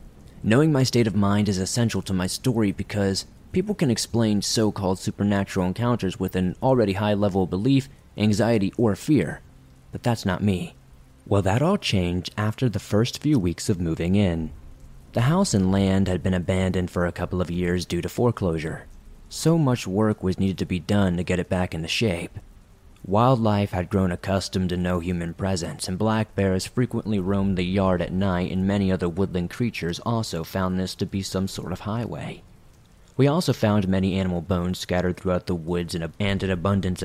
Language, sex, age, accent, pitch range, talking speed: English, male, 30-49, American, 90-105 Hz, 185 wpm